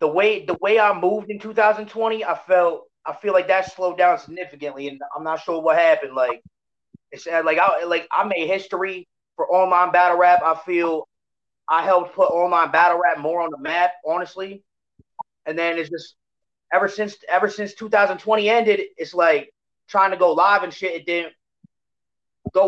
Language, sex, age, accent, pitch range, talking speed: English, male, 30-49, American, 160-190 Hz, 185 wpm